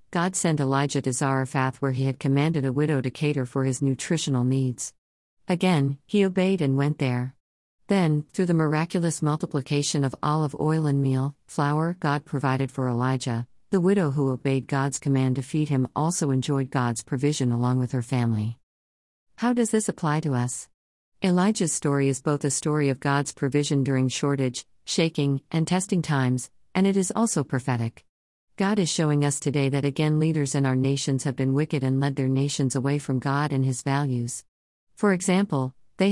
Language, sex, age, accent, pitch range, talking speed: English, female, 50-69, American, 130-155 Hz, 180 wpm